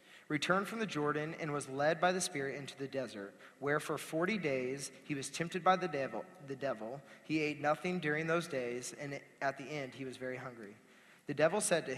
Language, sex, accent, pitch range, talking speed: English, male, American, 130-165 Hz, 215 wpm